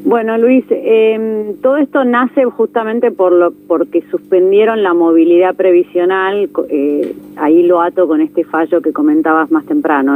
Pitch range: 180-245 Hz